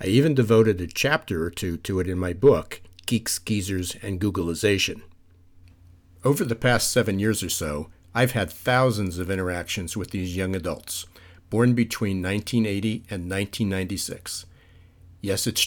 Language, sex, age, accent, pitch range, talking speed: English, male, 50-69, American, 90-115 Hz, 150 wpm